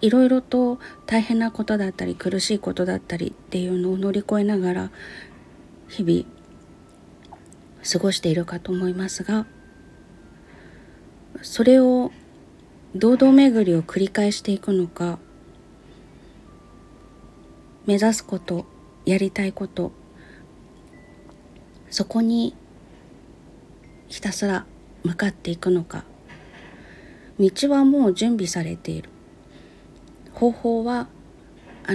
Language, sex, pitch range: Japanese, female, 165-220 Hz